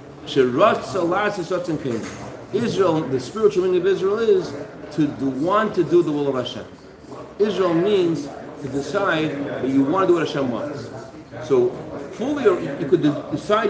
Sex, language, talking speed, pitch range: male, English, 150 wpm, 145-220 Hz